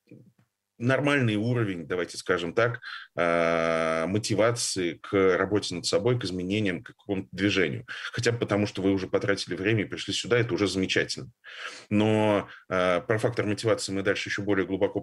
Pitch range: 95-110 Hz